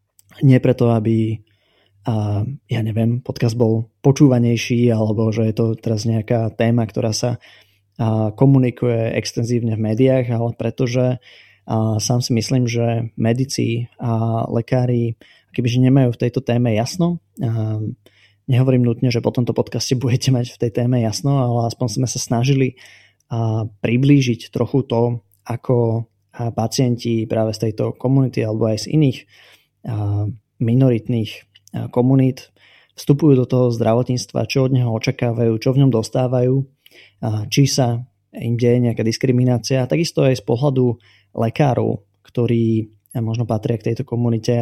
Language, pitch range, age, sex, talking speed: Slovak, 110-125 Hz, 20-39, male, 130 wpm